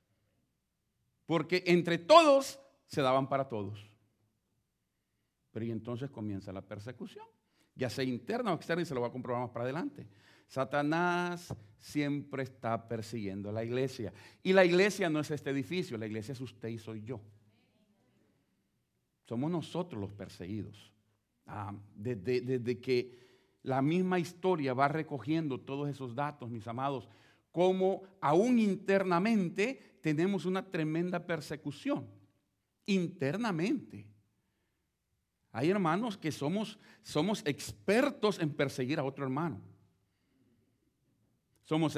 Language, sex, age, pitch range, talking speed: Spanish, male, 40-59, 110-170 Hz, 120 wpm